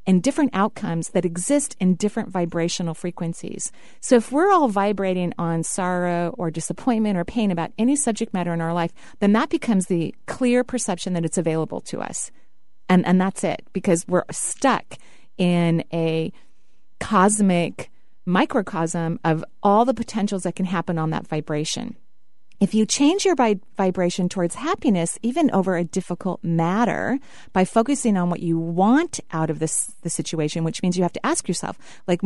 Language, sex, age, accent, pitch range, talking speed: English, female, 40-59, American, 170-220 Hz, 165 wpm